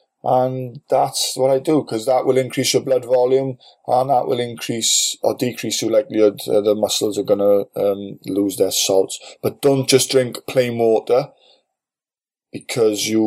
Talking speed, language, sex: 165 wpm, English, male